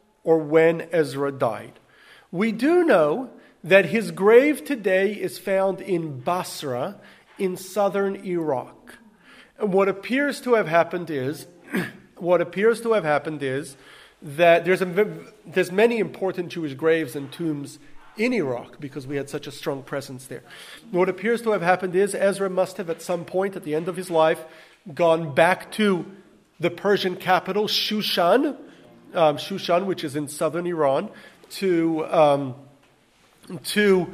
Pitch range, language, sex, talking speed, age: 155-210 Hz, English, male, 145 wpm, 40-59